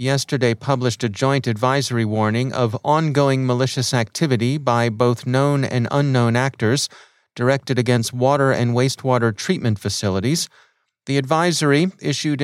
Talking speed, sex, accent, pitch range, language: 125 wpm, male, American, 115-140 Hz, English